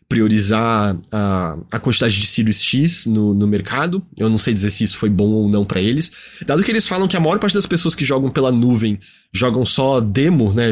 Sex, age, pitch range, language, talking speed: male, 20-39, 105-170 Hz, Portuguese, 225 wpm